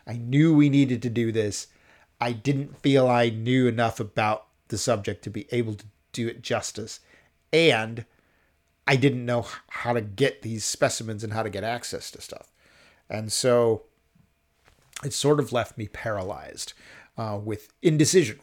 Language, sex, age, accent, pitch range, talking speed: English, male, 40-59, American, 110-140 Hz, 165 wpm